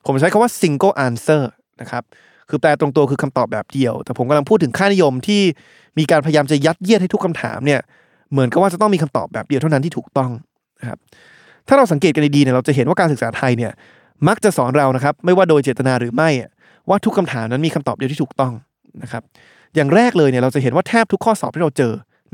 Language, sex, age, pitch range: Thai, male, 20-39, 130-175 Hz